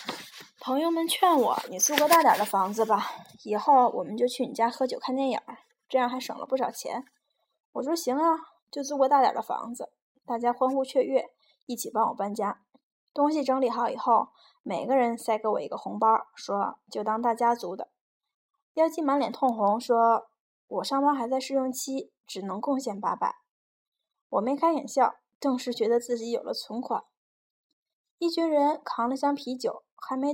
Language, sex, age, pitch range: Chinese, female, 10-29, 235-285 Hz